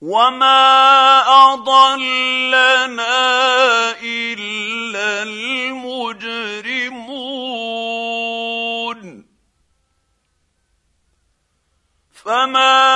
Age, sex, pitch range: 50-69, male, 170-230 Hz